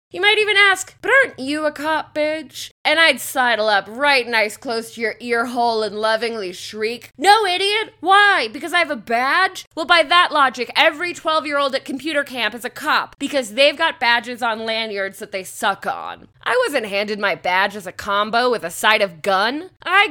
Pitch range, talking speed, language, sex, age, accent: 225-310 Hz, 205 wpm, English, female, 20-39, American